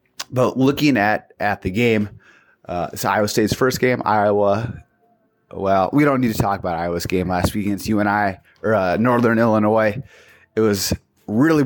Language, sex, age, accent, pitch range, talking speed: English, male, 30-49, American, 95-115 Hz, 175 wpm